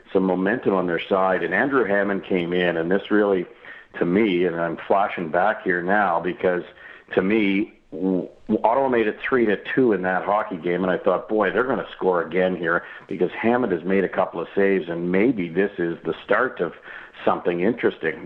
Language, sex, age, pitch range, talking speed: English, male, 50-69, 85-95 Hz, 195 wpm